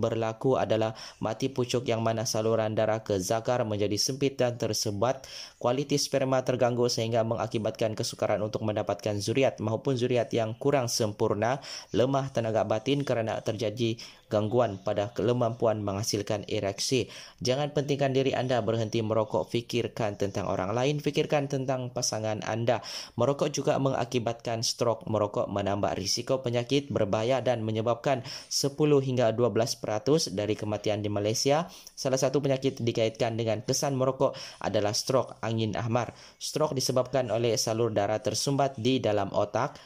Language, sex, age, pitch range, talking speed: Malay, male, 20-39, 110-130 Hz, 135 wpm